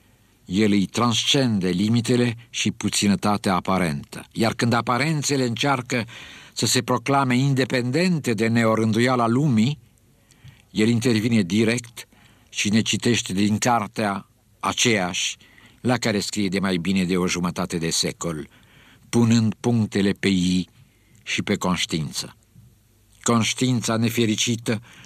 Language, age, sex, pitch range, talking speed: Romanian, 50-69, male, 100-120 Hz, 115 wpm